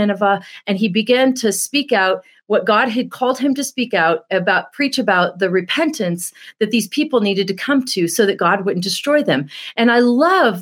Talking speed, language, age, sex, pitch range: 200 wpm, English, 30-49, female, 200-265 Hz